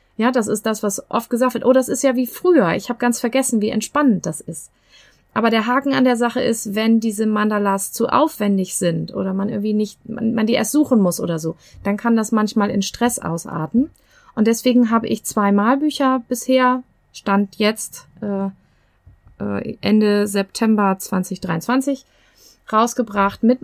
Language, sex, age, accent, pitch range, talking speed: German, female, 30-49, German, 185-240 Hz, 180 wpm